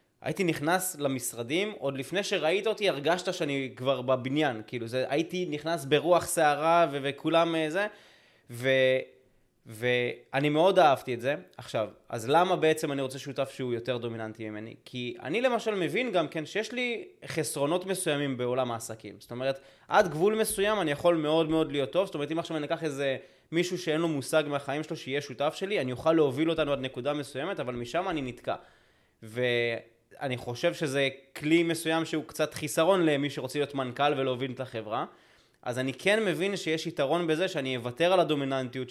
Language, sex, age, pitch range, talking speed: Hebrew, male, 20-39, 135-175 Hz, 160 wpm